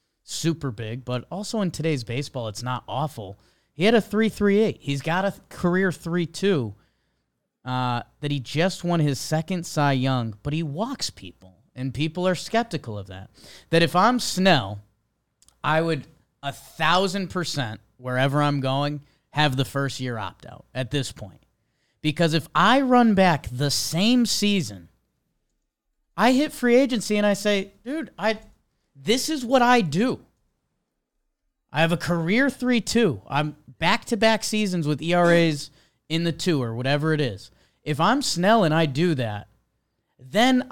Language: English